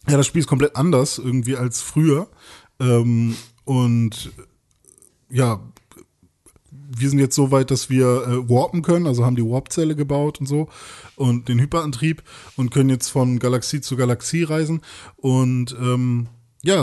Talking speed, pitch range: 155 wpm, 125-150 Hz